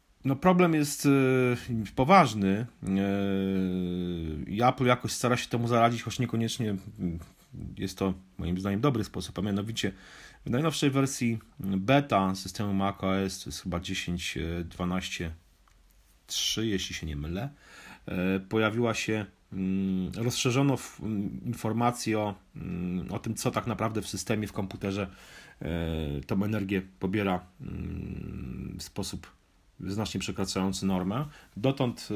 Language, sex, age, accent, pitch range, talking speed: Polish, male, 40-59, native, 90-105 Hz, 105 wpm